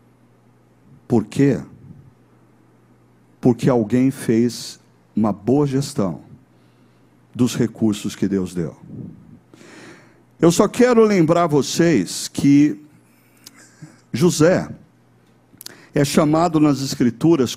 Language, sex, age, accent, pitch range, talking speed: Portuguese, male, 60-79, Brazilian, 110-160 Hz, 80 wpm